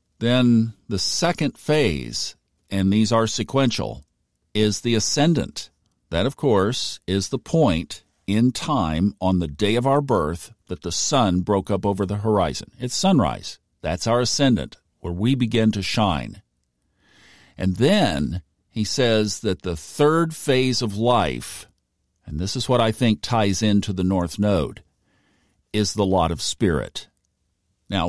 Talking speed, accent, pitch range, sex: 150 wpm, American, 95-125 Hz, male